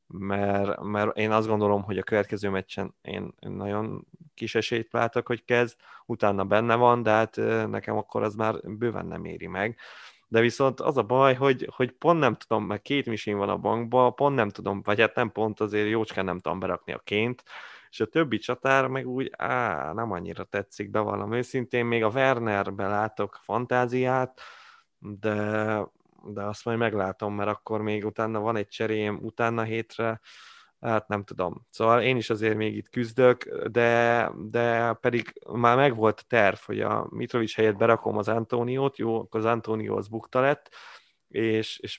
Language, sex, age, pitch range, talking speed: Hungarian, male, 20-39, 105-120 Hz, 175 wpm